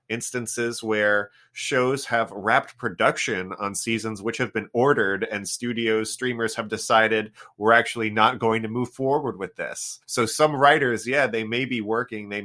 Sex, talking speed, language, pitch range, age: male, 170 wpm, English, 95-120 Hz, 30-49